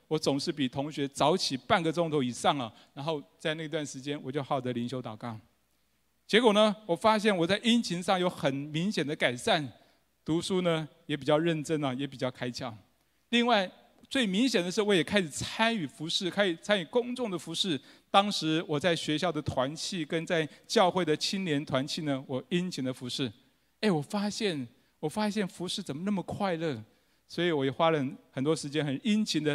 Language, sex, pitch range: Chinese, male, 140-195 Hz